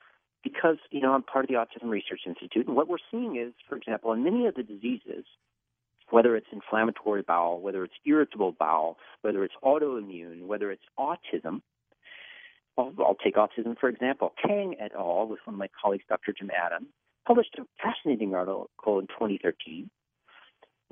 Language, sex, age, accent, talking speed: English, male, 50-69, American, 170 wpm